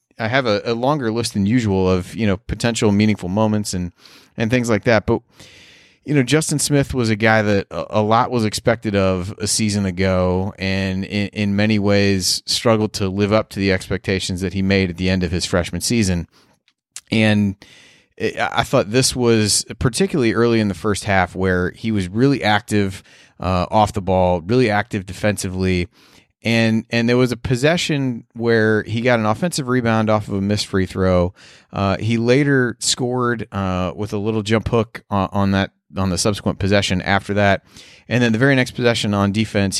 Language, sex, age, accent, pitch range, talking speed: English, male, 30-49, American, 95-115 Hz, 195 wpm